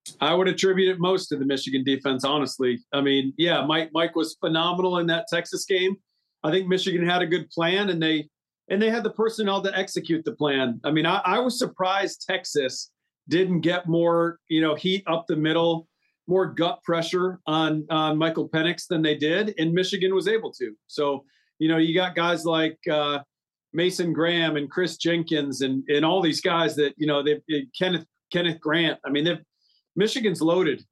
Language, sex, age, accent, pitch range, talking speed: English, male, 40-59, American, 150-175 Hz, 195 wpm